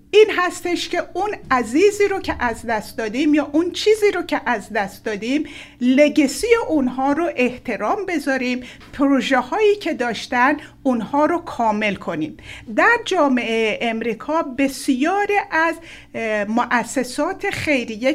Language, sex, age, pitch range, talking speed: Persian, female, 50-69, 230-330 Hz, 125 wpm